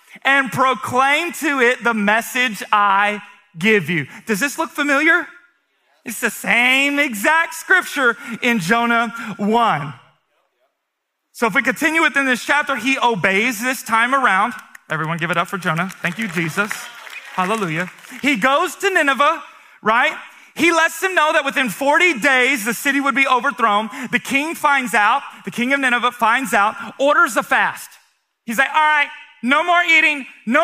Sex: male